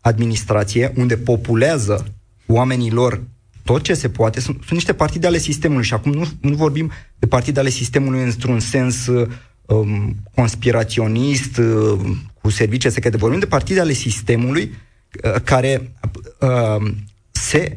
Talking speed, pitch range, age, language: 135 wpm, 105-130 Hz, 30-49, Romanian